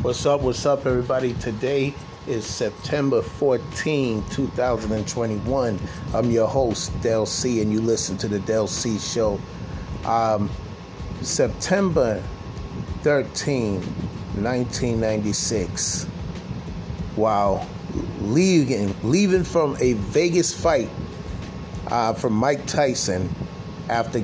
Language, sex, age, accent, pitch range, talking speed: English, male, 30-49, American, 105-135 Hz, 95 wpm